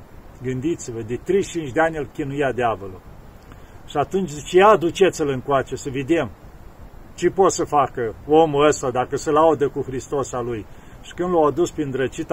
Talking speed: 175 wpm